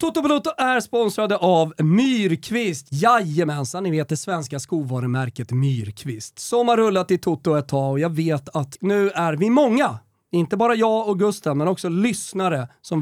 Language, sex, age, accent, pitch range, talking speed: Swedish, male, 30-49, native, 145-215 Hz, 165 wpm